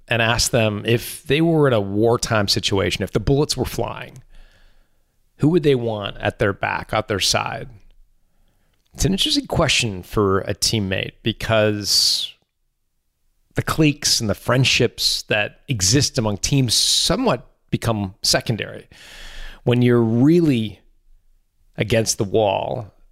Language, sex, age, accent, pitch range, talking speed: English, male, 30-49, American, 100-130 Hz, 130 wpm